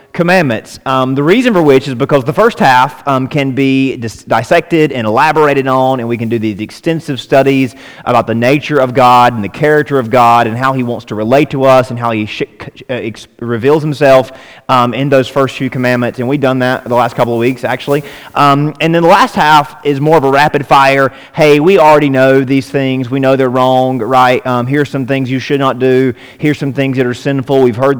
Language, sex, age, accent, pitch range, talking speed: English, male, 30-49, American, 120-140 Hz, 225 wpm